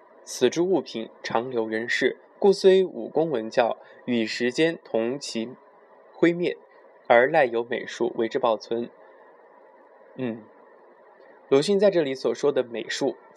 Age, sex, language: 20-39, male, Chinese